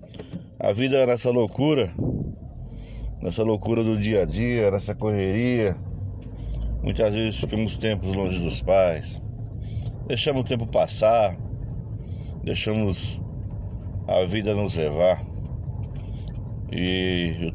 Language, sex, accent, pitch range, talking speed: Portuguese, male, Brazilian, 95-115 Hz, 105 wpm